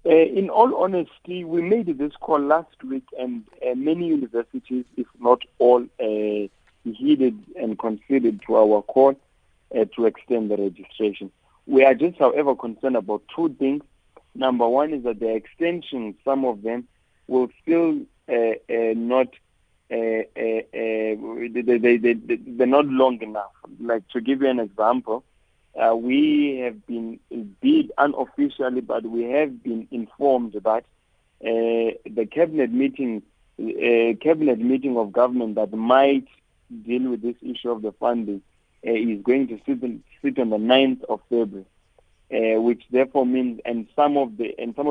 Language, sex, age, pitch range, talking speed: English, male, 50-69, 115-140 Hz, 150 wpm